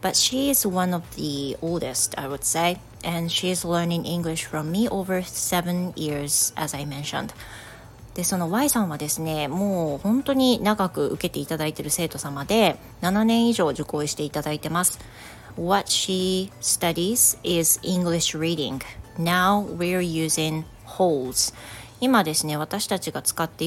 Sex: female